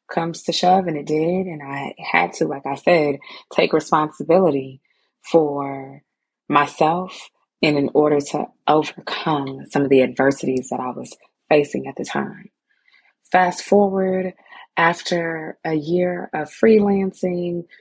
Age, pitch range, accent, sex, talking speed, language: 20-39, 140-175 Hz, American, female, 135 wpm, English